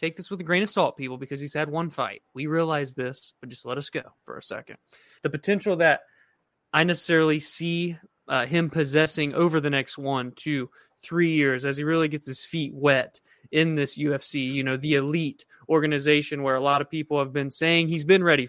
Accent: American